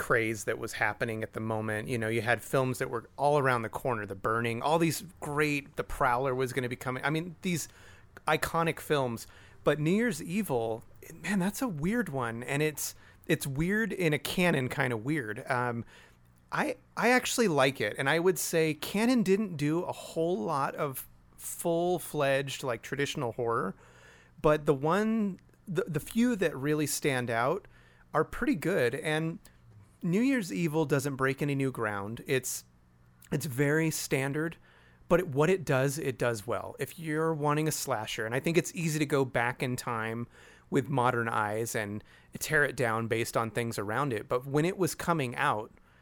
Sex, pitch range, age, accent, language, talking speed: male, 115-160 Hz, 30-49, American, English, 185 wpm